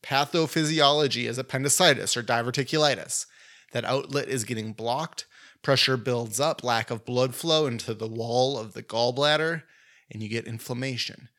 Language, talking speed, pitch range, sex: English, 140 wpm, 120-150 Hz, male